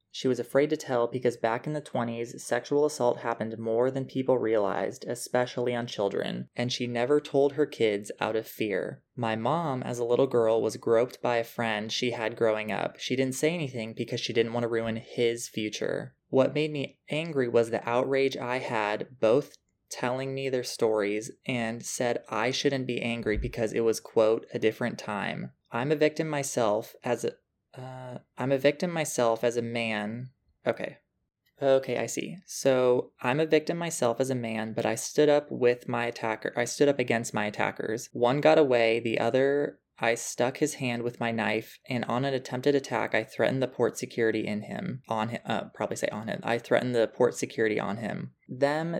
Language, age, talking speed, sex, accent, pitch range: English, 20-39, 195 wpm, male, American, 115-135 Hz